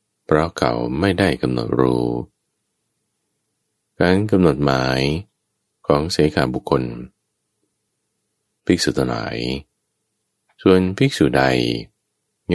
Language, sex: Thai, male